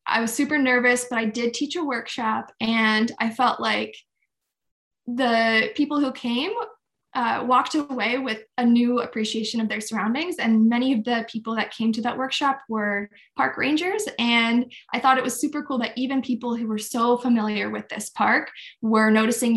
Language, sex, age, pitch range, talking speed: English, female, 10-29, 225-270 Hz, 185 wpm